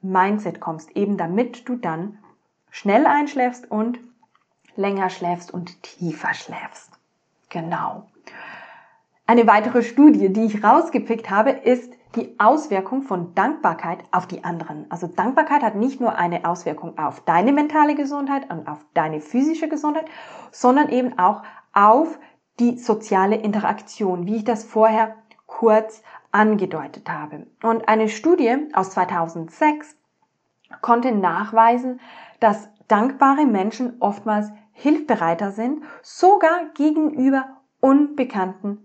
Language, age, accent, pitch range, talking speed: German, 20-39, German, 190-265 Hz, 115 wpm